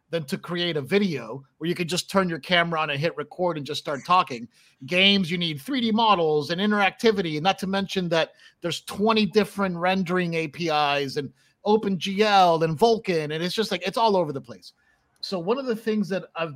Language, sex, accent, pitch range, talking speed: English, male, American, 155-195 Hz, 205 wpm